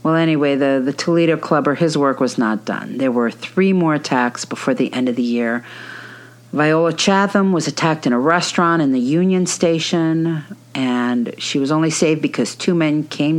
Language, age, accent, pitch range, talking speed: English, 50-69, American, 125-165 Hz, 190 wpm